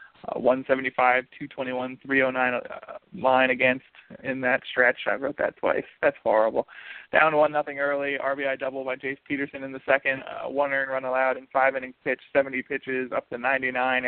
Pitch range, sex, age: 130-140 Hz, male, 20-39